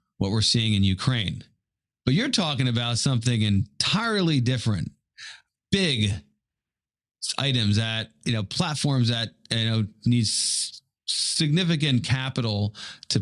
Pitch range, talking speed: 105-135 Hz, 115 wpm